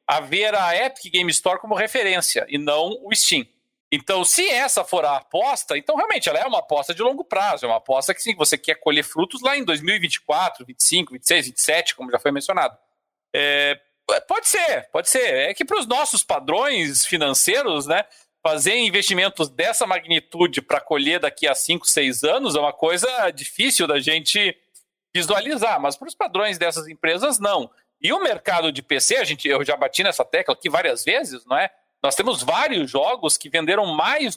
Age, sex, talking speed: 40-59, male, 190 wpm